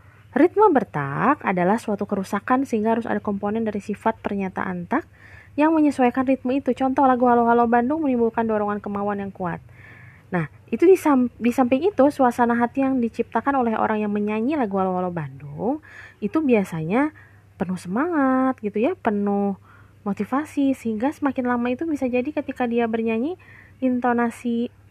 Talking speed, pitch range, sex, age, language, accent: 145 wpm, 185-255 Hz, female, 20-39, Indonesian, native